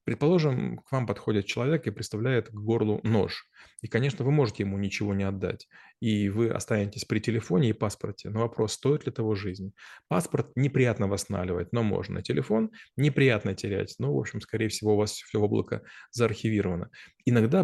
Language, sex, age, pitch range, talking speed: Russian, male, 20-39, 105-120 Hz, 170 wpm